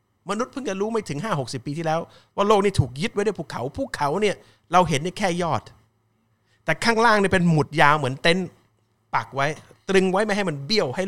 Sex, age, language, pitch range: male, 30-49, Thai, 115-175 Hz